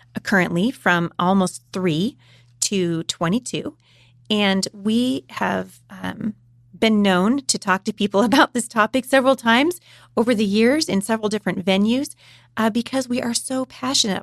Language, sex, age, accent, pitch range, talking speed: English, female, 30-49, American, 180-230 Hz, 145 wpm